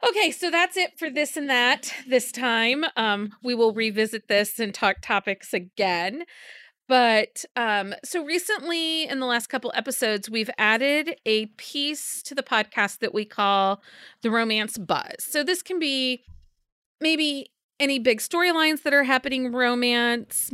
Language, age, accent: English, 30-49, American